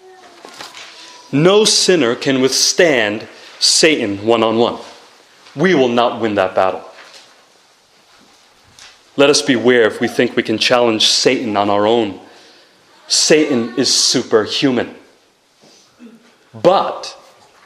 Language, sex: English, male